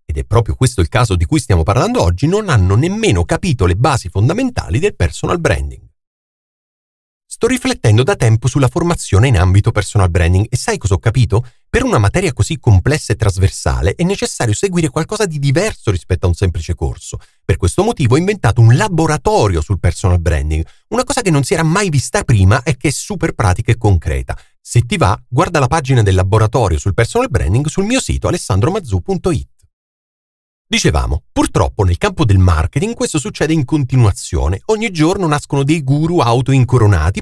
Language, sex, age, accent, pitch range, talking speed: Italian, male, 40-59, native, 95-155 Hz, 180 wpm